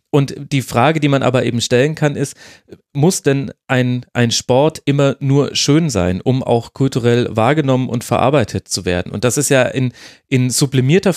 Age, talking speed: 30-49, 185 wpm